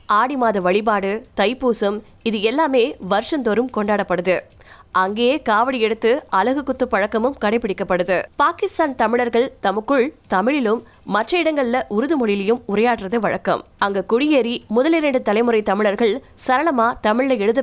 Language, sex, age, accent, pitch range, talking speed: Tamil, female, 20-39, native, 200-260 Hz, 60 wpm